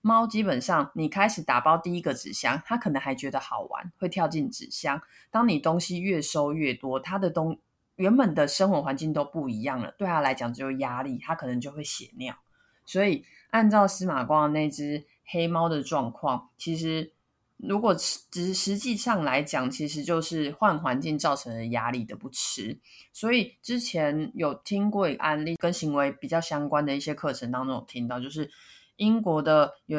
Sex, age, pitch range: female, 20-39, 140-190 Hz